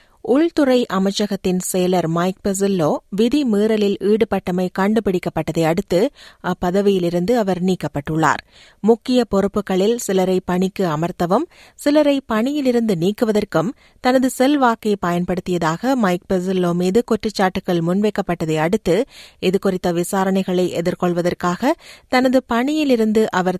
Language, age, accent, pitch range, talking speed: Tamil, 30-49, native, 180-220 Hz, 90 wpm